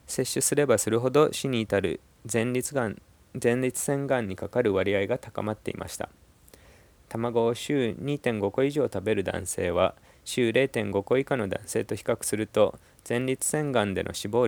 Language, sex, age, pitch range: Japanese, male, 20-39, 100-135 Hz